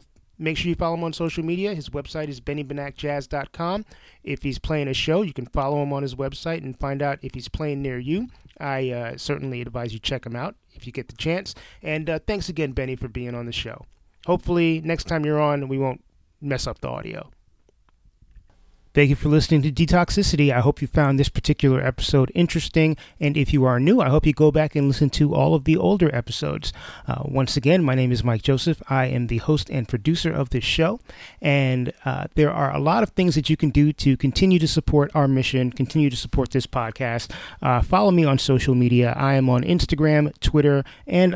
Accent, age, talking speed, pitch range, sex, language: American, 30-49, 220 wpm, 130-160 Hz, male, English